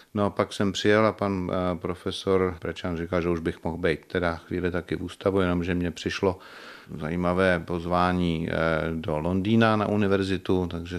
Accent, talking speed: native, 160 wpm